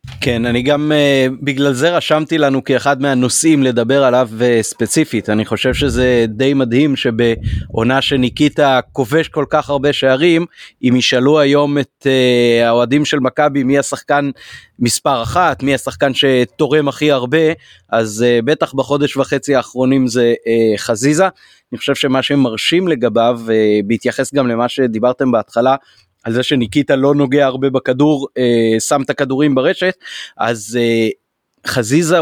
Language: Hebrew